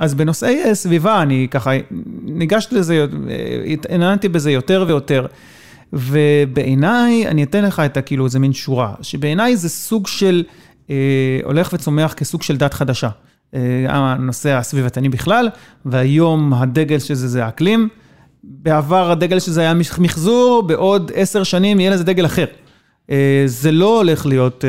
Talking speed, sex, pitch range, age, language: 140 wpm, male, 135-175 Hz, 30-49, Hebrew